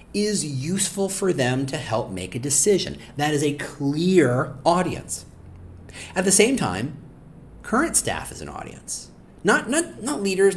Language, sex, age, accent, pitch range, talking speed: English, male, 40-59, American, 120-190 Hz, 155 wpm